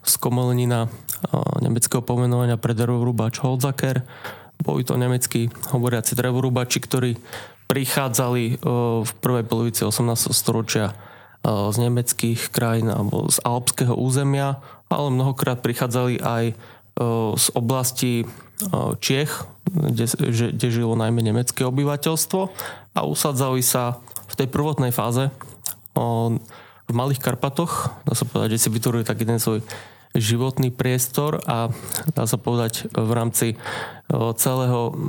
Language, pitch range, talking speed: Slovak, 115-135 Hz, 110 wpm